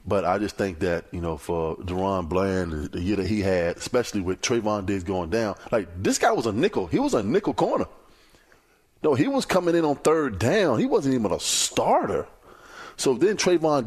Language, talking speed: English, 210 wpm